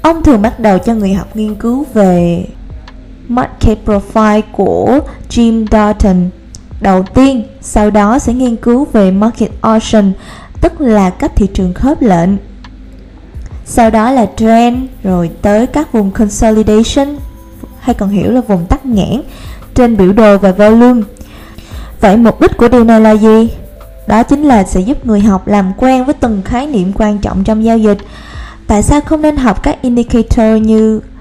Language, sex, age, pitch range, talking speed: Vietnamese, female, 20-39, 205-250 Hz, 165 wpm